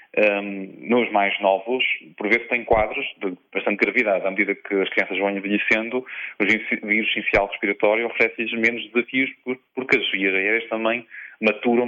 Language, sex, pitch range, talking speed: Portuguese, male, 100-120 Hz, 150 wpm